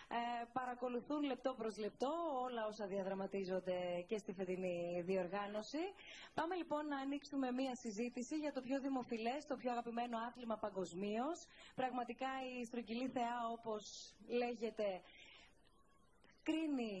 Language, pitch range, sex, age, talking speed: Greek, 215-260 Hz, female, 20-39, 120 wpm